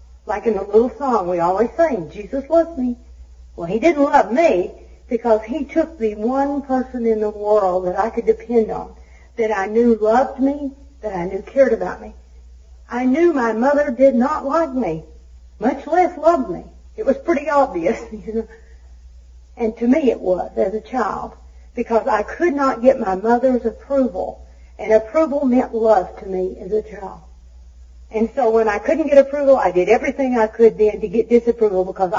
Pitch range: 175-260 Hz